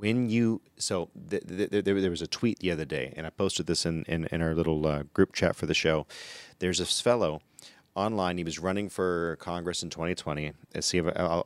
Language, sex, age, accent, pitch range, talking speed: English, male, 30-49, American, 85-115 Hz, 220 wpm